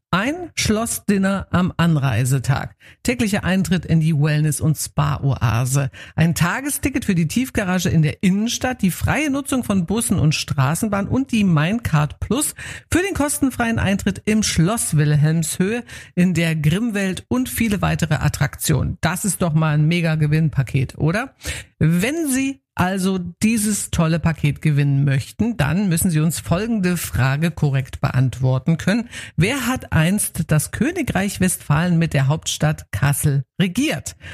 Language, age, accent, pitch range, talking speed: German, 50-69, German, 150-200 Hz, 140 wpm